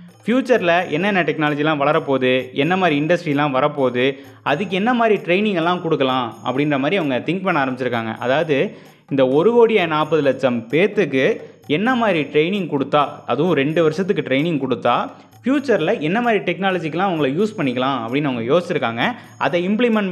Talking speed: 145 wpm